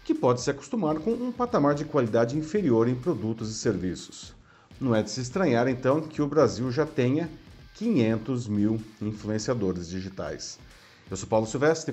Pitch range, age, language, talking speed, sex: 105-155 Hz, 40-59, Portuguese, 165 wpm, male